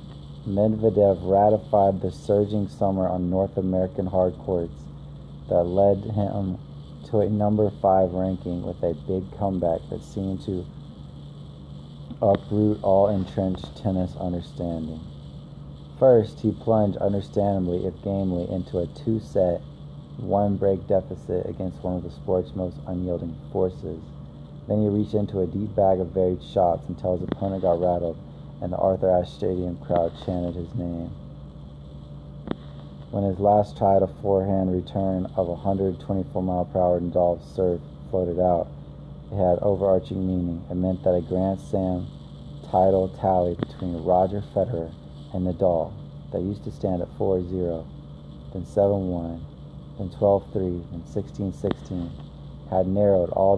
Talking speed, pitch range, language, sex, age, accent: 135 wpm, 85-100 Hz, English, male, 30-49, American